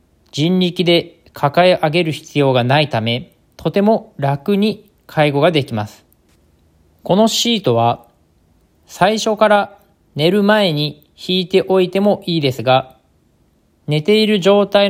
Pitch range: 120-185 Hz